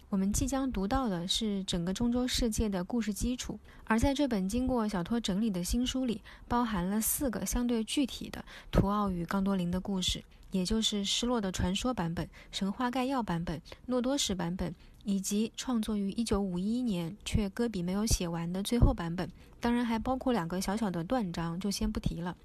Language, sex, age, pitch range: Chinese, female, 20-39, 185-235 Hz